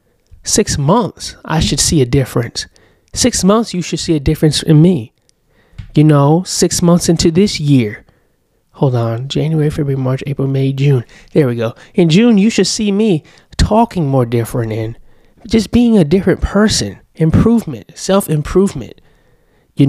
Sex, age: male, 20-39